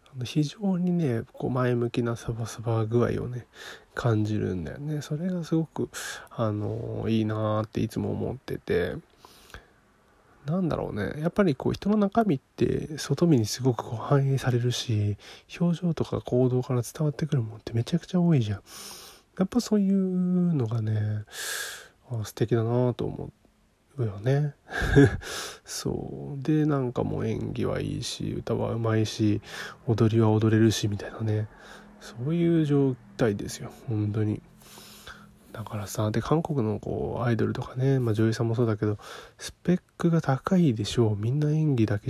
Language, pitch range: Japanese, 110-145 Hz